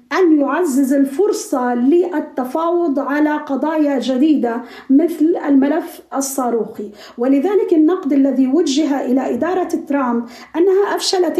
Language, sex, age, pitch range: Arabic, female, 40-59, 275-325 Hz